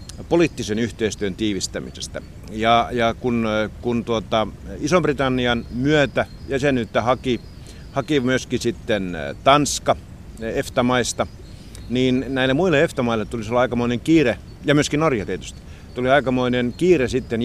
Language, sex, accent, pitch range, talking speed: Finnish, male, native, 100-125 Hz, 115 wpm